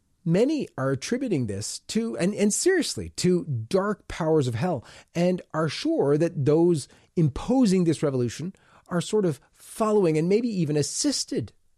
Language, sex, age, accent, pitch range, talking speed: English, male, 30-49, American, 120-180 Hz, 150 wpm